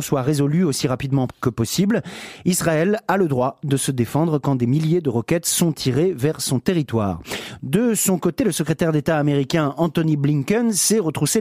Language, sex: French, male